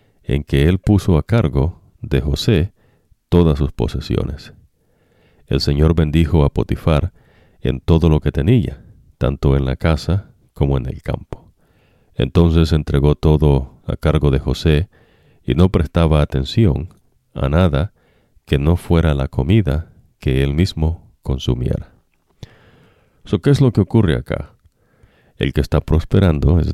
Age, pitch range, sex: 50-69, 70-90 Hz, male